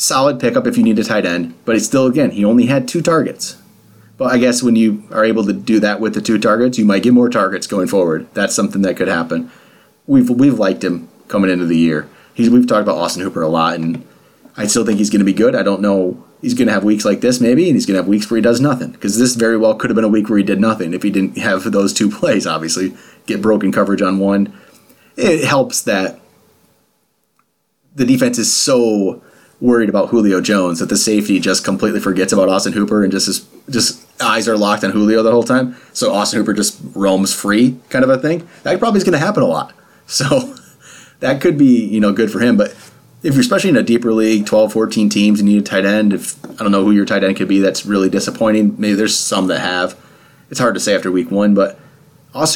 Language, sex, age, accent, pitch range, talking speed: English, male, 30-49, American, 100-125 Hz, 250 wpm